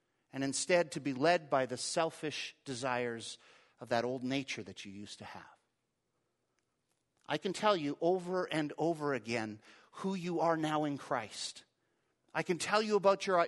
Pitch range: 150-205 Hz